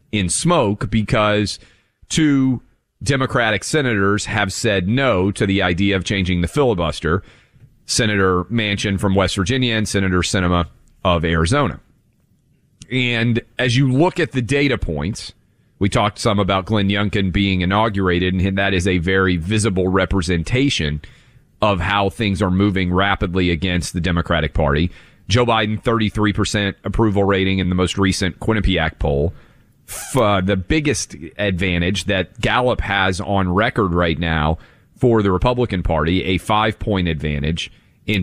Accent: American